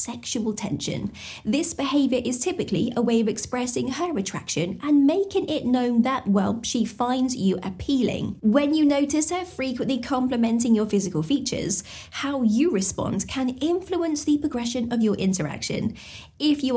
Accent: British